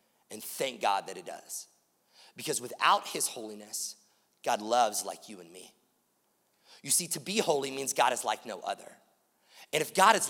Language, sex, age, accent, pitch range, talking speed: English, male, 30-49, American, 175-225 Hz, 180 wpm